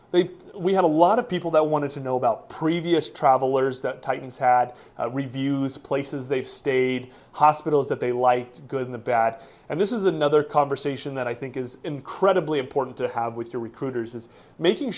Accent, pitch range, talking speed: American, 130-155 Hz, 190 wpm